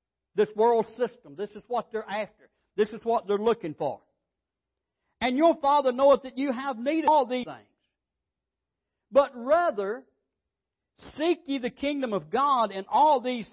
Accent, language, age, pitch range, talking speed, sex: American, English, 60-79, 210-285 Hz, 165 wpm, male